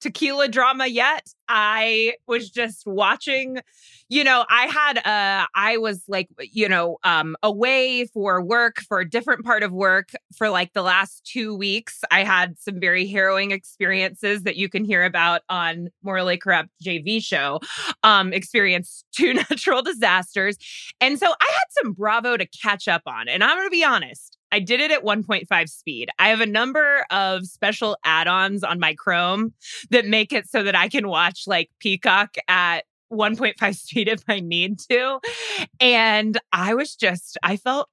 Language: English